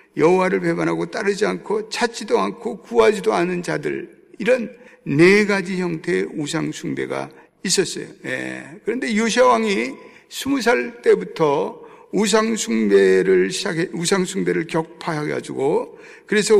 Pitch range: 155-225 Hz